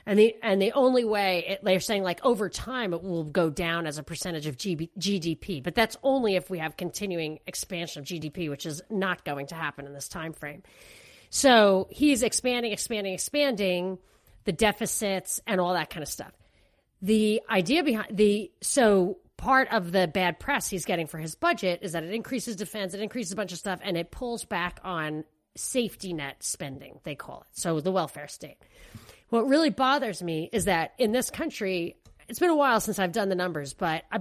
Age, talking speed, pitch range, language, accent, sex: 40-59, 205 wpm, 170-225 Hz, English, American, female